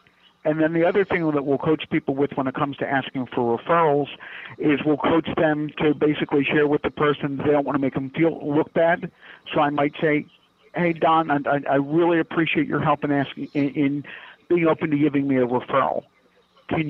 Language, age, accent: English, 50-69, American